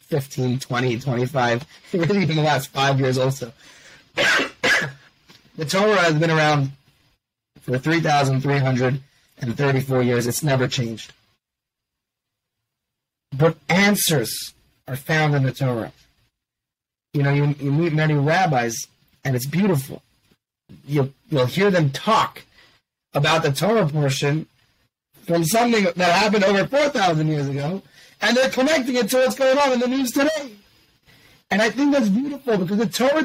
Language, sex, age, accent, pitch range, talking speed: English, male, 30-49, American, 135-190 Hz, 135 wpm